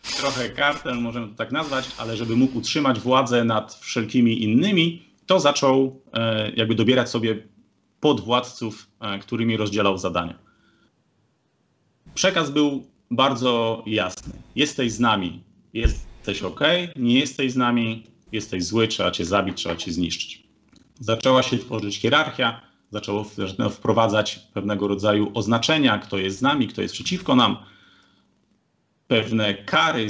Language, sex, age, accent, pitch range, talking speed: Polish, male, 30-49, native, 105-130 Hz, 125 wpm